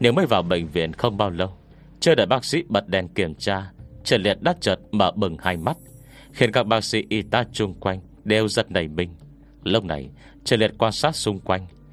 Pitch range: 90-120 Hz